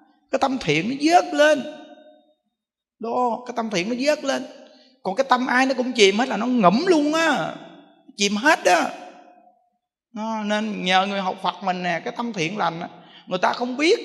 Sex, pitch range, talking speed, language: male, 185-260 Hz, 190 wpm, Vietnamese